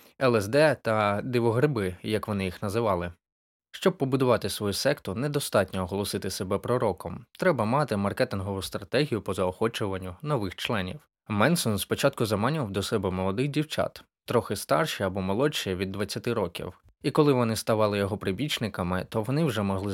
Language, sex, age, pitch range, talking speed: Ukrainian, male, 20-39, 95-120 Hz, 140 wpm